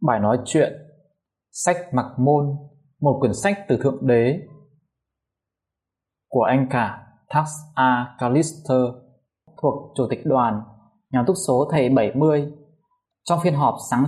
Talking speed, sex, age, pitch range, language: 130 wpm, male, 20-39, 115-155 Hz, Vietnamese